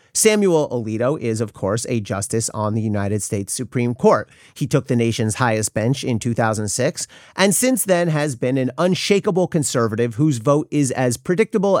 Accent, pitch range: American, 115-175 Hz